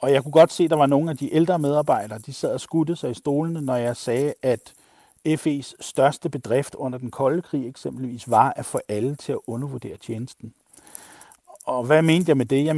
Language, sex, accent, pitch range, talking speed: Danish, male, native, 125-155 Hz, 220 wpm